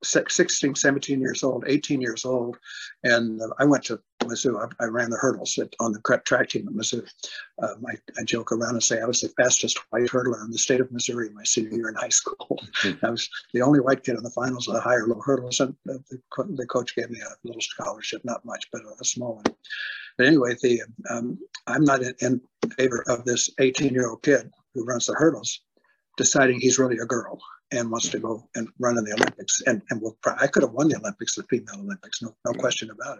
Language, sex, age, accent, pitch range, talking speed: English, male, 60-79, American, 115-135 Hz, 230 wpm